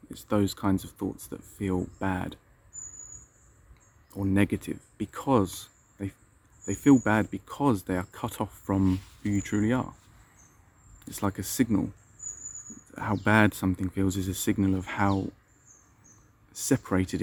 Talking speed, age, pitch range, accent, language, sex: 135 wpm, 30-49, 95-110 Hz, British, English, male